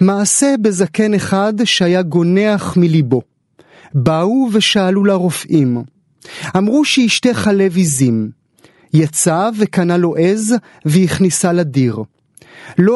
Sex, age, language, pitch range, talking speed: male, 30-49, Hebrew, 155-200 Hz, 95 wpm